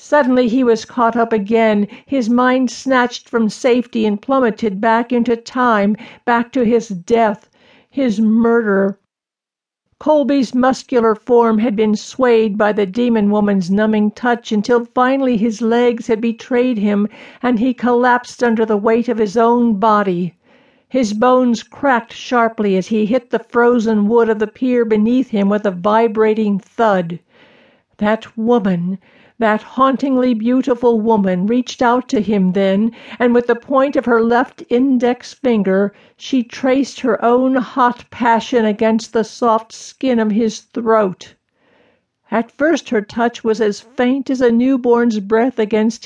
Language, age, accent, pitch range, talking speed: English, 60-79, American, 220-250 Hz, 150 wpm